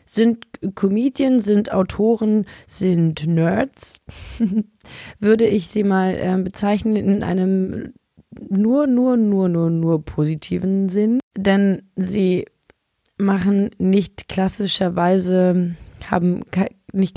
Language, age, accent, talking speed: German, 20-39, German, 100 wpm